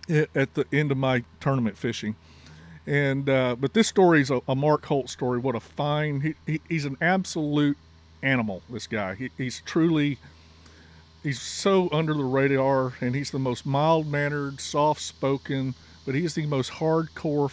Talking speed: 155 wpm